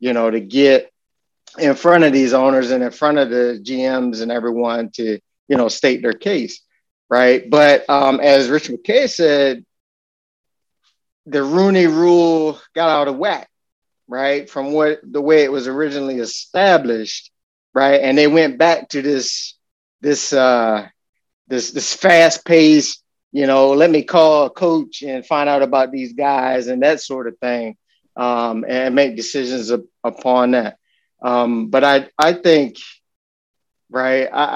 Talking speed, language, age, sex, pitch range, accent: 150 wpm, English, 30-49, male, 125-155 Hz, American